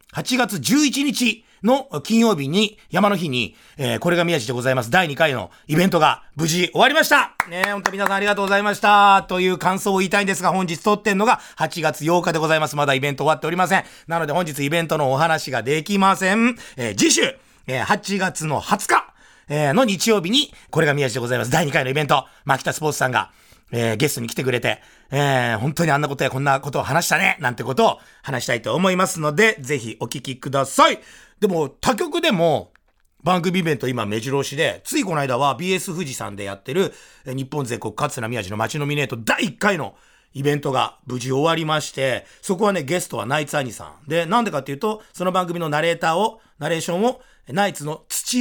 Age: 40-59